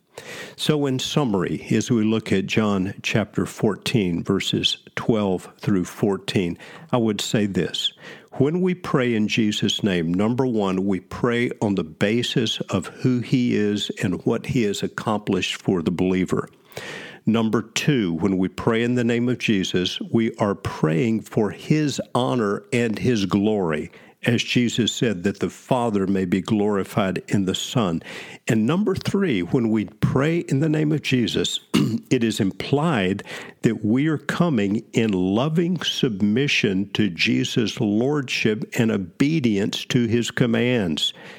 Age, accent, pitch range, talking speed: 50-69, American, 100-135 Hz, 150 wpm